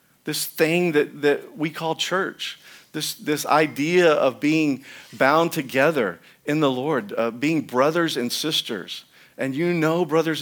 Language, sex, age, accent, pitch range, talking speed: English, male, 50-69, American, 130-165 Hz, 150 wpm